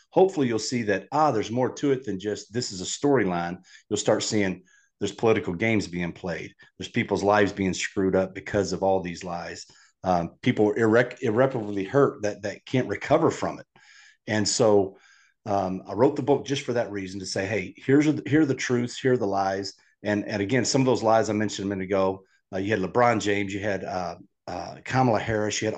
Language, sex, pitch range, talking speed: English, male, 100-125 Hz, 220 wpm